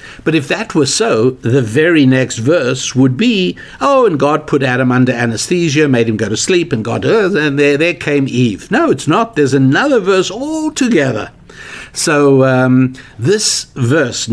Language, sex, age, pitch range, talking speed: English, male, 60-79, 115-145 Hz, 175 wpm